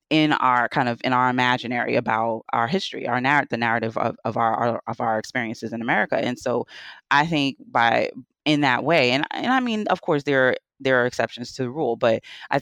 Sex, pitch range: female, 125-150 Hz